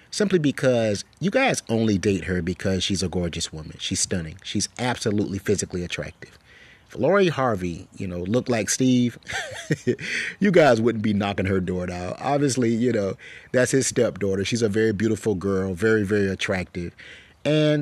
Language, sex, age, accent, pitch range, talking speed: English, male, 30-49, American, 100-125 Hz, 165 wpm